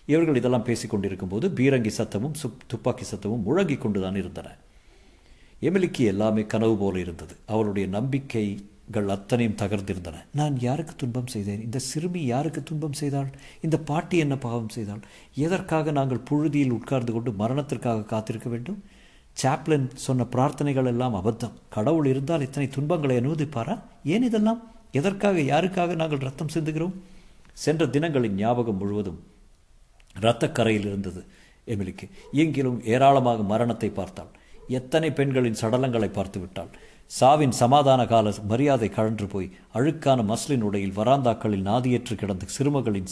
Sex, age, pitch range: male, 50-69, 105-140 Hz